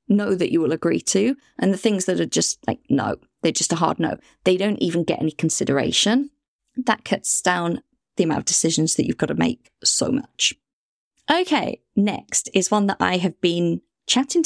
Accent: British